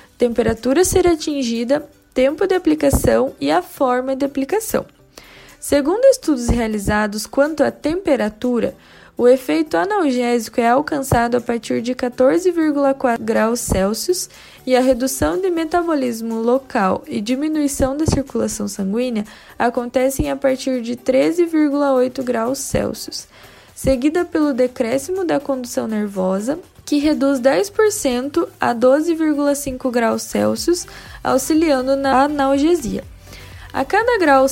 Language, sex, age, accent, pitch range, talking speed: Portuguese, female, 10-29, Brazilian, 245-305 Hz, 115 wpm